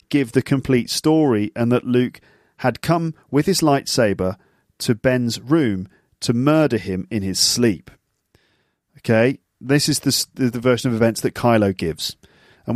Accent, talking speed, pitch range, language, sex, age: British, 155 wpm, 105-135 Hz, English, male, 40-59